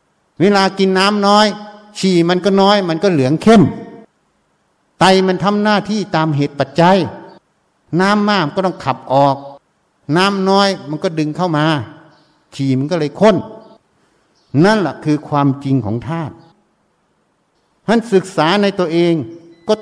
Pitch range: 130-180 Hz